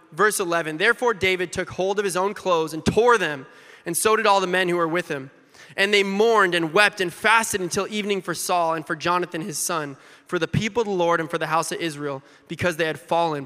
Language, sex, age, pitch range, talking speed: English, male, 20-39, 175-240 Hz, 245 wpm